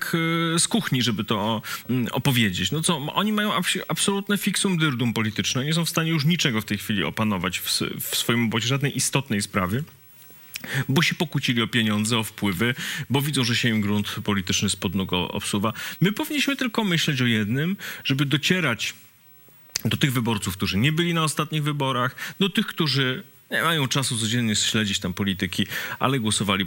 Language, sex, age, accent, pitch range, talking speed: English, male, 40-59, Polish, 110-165 Hz, 170 wpm